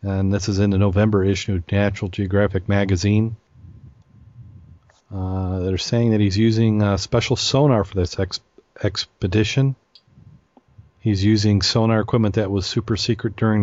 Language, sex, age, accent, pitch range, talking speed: English, male, 40-59, American, 95-120 Hz, 140 wpm